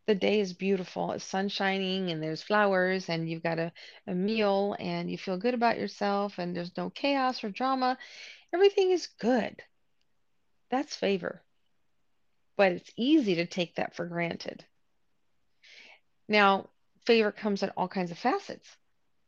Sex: female